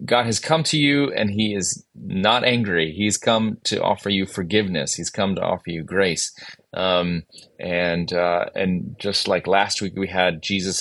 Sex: male